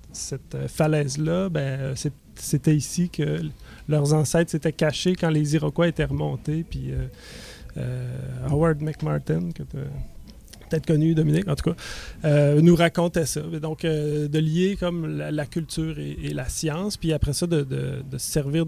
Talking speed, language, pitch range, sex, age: 160 wpm, French, 140-165 Hz, male, 30-49